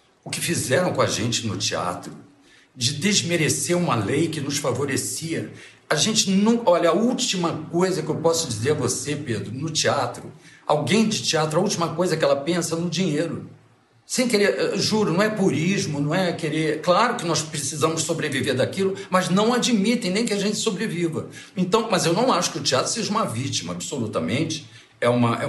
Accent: Brazilian